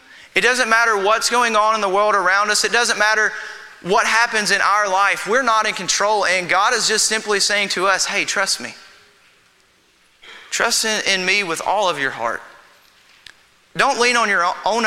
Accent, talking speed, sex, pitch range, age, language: American, 195 wpm, male, 170-215 Hz, 20-39, English